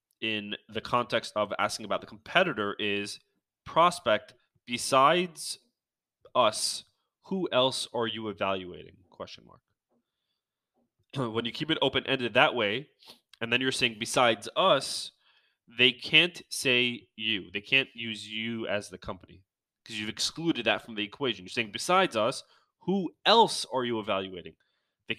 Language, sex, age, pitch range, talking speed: English, male, 20-39, 110-135 Hz, 140 wpm